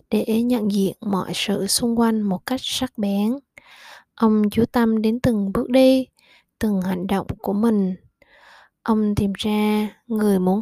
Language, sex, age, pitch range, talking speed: Vietnamese, female, 20-39, 195-230 Hz, 160 wpm